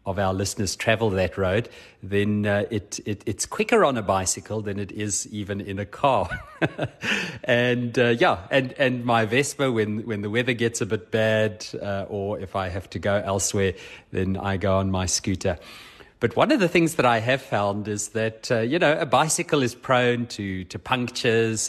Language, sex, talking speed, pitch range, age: English, male, 200 wpm, 100-125 Hz, 30-49